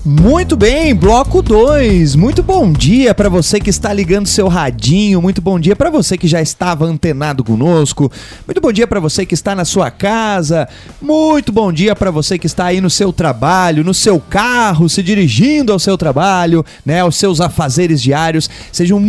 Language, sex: Portuguese, male